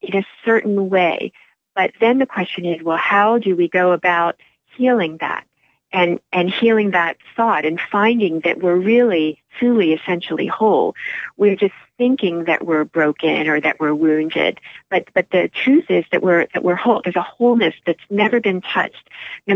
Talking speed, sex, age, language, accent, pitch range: 180 wpm, female, 40-59, English, American, 165-205 Hz